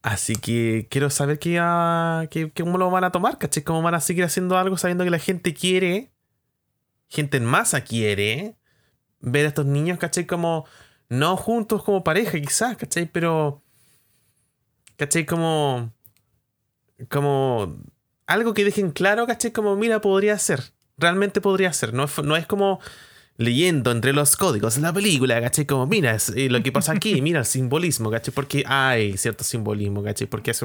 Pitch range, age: 120-170 Hz, 20-39